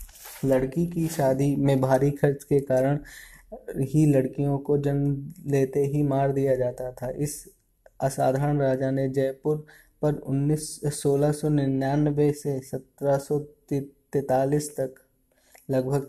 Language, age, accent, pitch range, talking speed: Hindi, 20-39, native, 130-145 Hz, 110 wpm